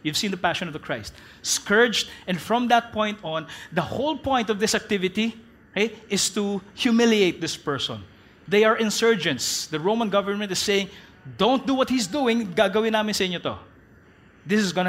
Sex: male